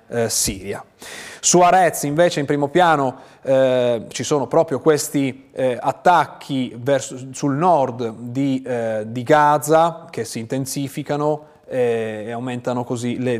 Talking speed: 135 wpm